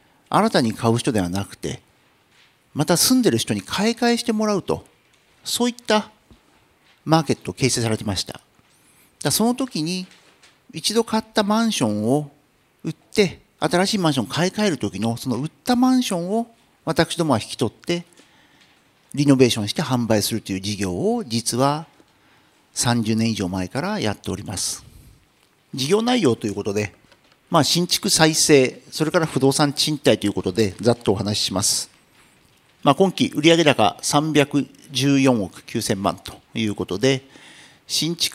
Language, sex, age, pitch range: Japanese, male, 50-69, 125-200 Hz